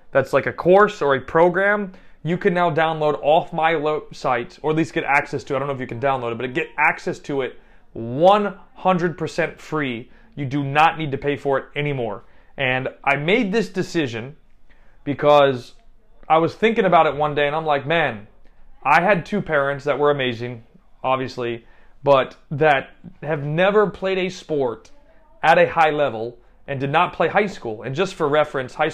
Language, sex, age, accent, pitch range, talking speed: English, male, 30-49, American, 135-170 Hz, 195 wpm